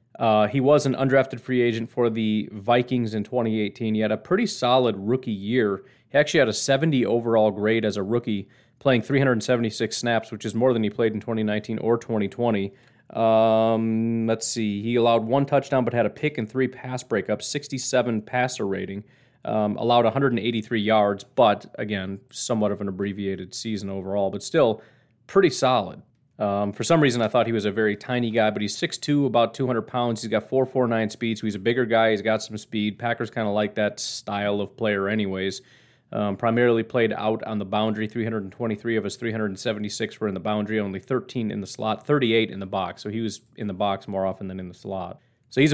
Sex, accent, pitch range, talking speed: male, American, 105-125 Hz, 200 wpm